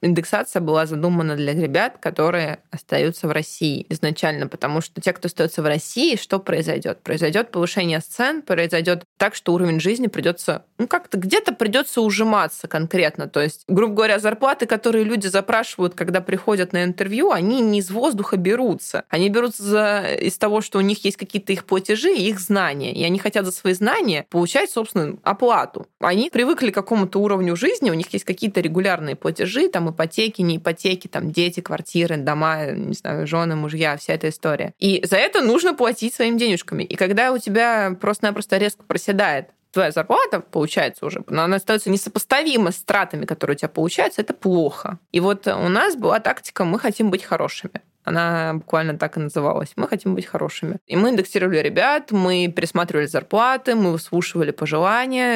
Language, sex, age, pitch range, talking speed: Russian, female, 20-39, 170-210 Hz, 170 wpm